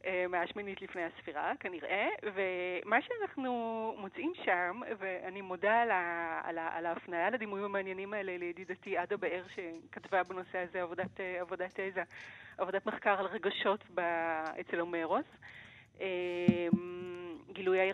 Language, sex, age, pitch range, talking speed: Hebrew, female, 30-49, 185-255 Hz, 105 wpm